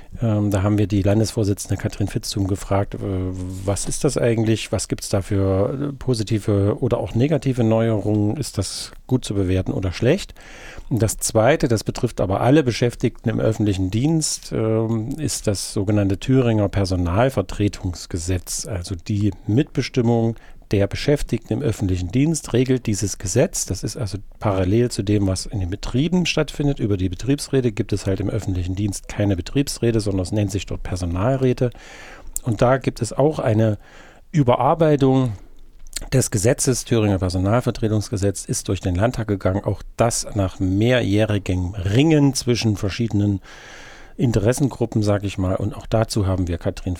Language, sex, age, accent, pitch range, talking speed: German, male, 40-59, German, 100-120 Hz, 150 wpm